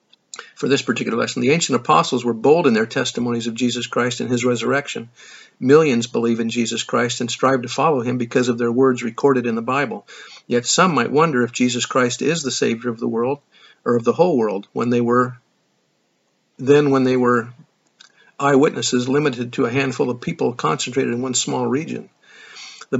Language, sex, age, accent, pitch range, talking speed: English, male, 50-69, American, 120-140 Hz, 195 wpm